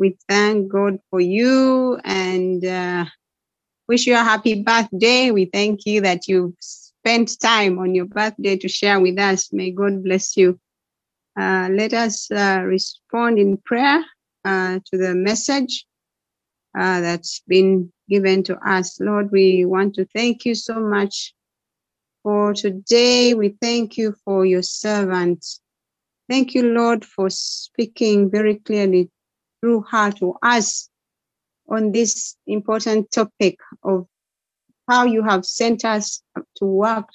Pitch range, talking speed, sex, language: 190-235 Hz, 140 wpm, female, English